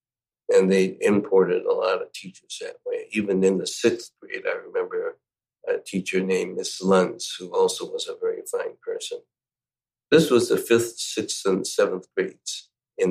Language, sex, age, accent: Japanese, male, 60-79, American